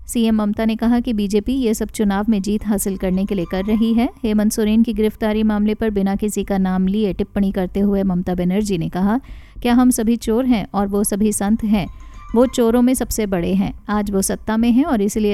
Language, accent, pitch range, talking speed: Hindi, native, 195-230 Hz, 230 wpm